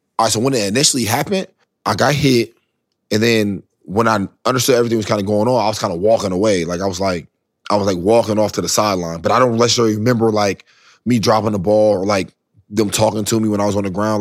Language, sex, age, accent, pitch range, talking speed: English, male, 20-39, American, 95-110 Hz, 260 wpm